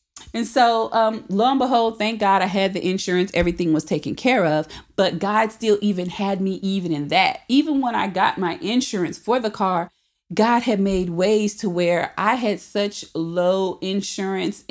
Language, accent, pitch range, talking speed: English, American, 180-215 Hz, 190 wpm